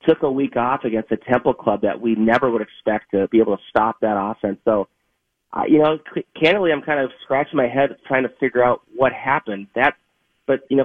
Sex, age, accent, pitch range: male, 30-49, American, 115-135 Hz